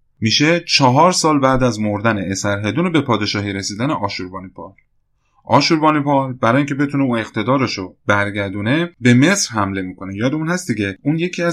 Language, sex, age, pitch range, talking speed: Persian, male, 30-49, 105-155 Hz, 150 wpm